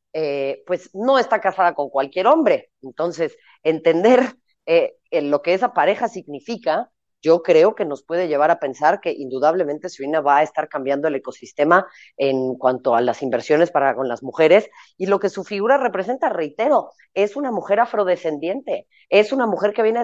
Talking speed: 175 wpm